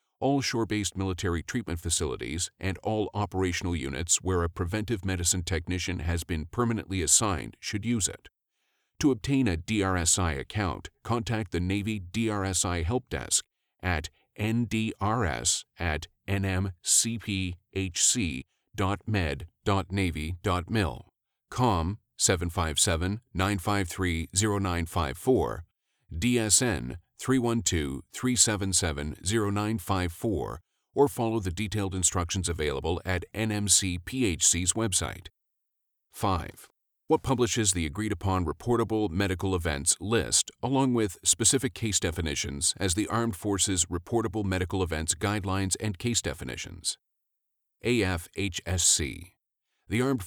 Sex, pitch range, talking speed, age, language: male, 90-110 Hz, 95 wpm, 50-69, English